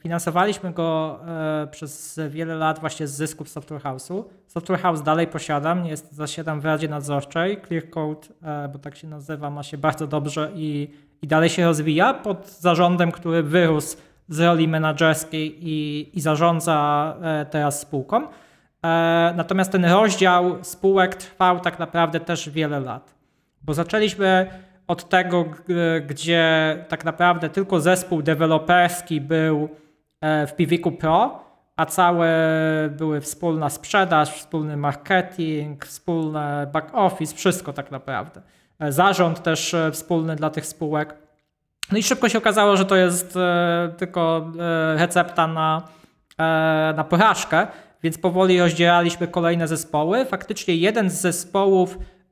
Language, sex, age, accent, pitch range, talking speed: Polish, male, 20-39, native, 155-180 Hz, 125 wpm